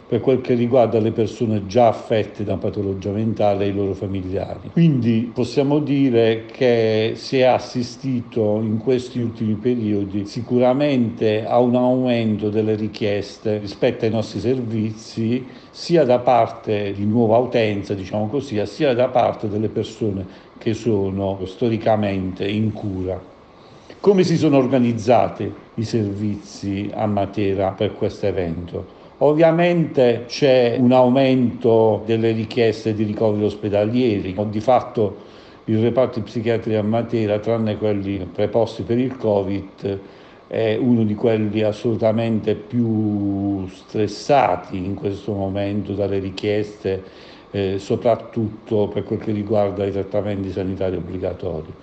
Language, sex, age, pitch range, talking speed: Italian, male, 50-69, 100-120 Hz, 125 wpm